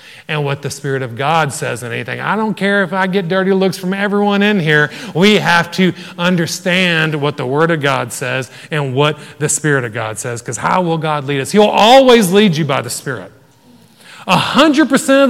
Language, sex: English, male